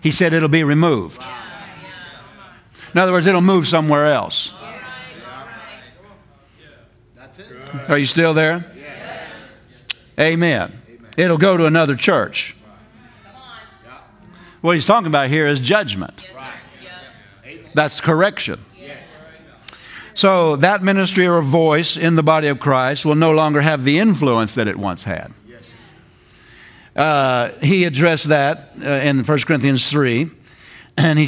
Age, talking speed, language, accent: 50-69, 120 wpm, English, American